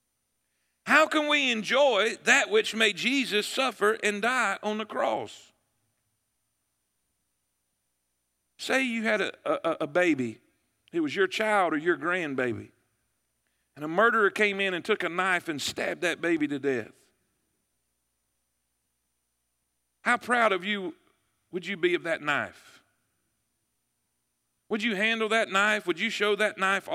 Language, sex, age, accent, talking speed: English, male, 50-69, American, 140 wpm